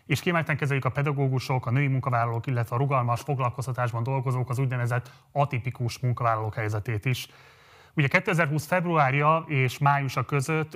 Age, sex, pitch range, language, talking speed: 30-49, male, 120-140 Hz, Hungarian, 140 wpm